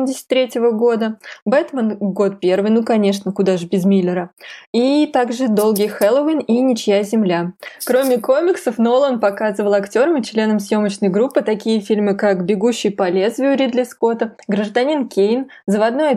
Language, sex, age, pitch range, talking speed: Russian, female, 20-39, 190-235 Hz, 135 wpm